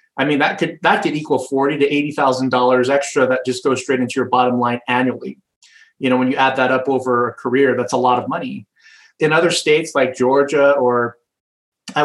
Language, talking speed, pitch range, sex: English, 215 wpm, 125-140 Hz, male